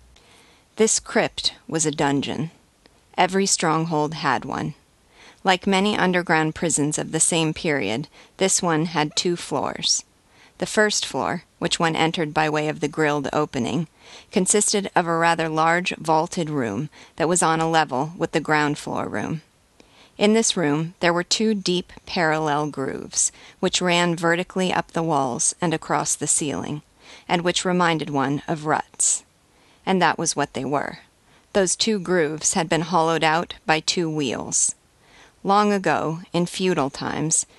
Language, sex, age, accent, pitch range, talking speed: English, female, 40-59, American, 150-180 Hz, 155 wpm